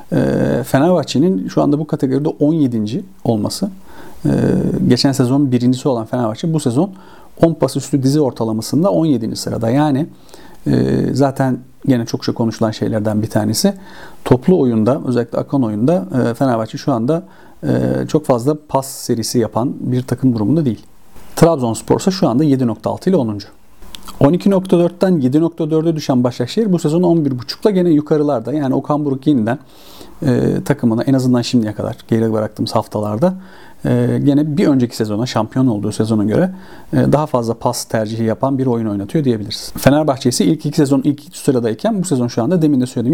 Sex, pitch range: male, 115-150 Hz